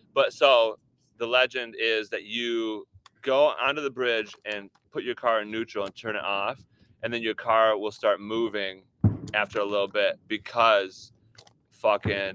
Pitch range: 110-130 Hz